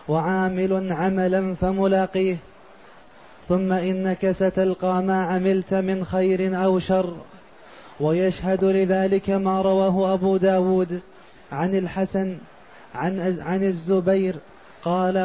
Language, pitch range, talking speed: Arabic, 185-195 Hz, 90 wpm